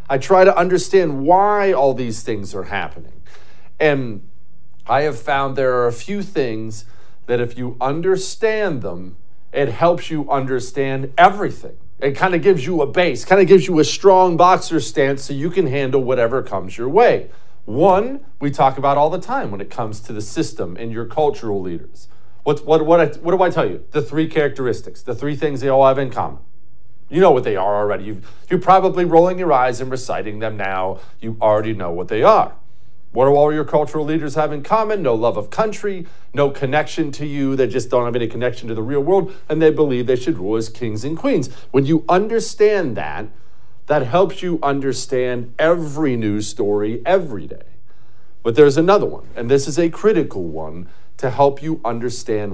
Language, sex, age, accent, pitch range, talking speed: English, male, 40-59, American, 120-170 Hz, 200 wpm